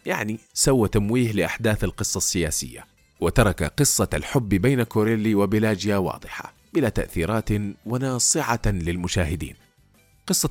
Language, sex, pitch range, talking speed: Arabic, male, 100-135 Hz, 105 wpm